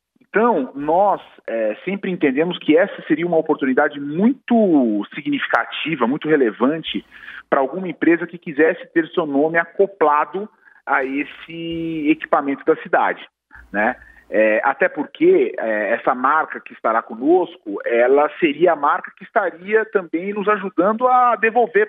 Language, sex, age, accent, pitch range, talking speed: Portuguese, male, 40-59, Brazilian, 140-210 Hz, 125 wpm